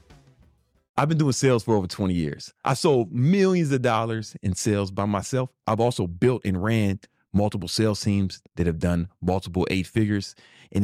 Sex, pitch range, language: male, 90-120 Hz, English